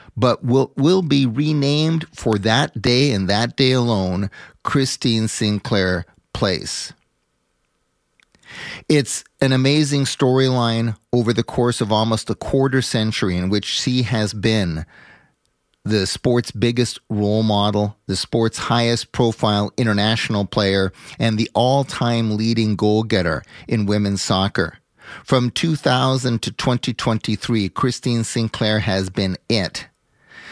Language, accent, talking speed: English, American, 120 wpm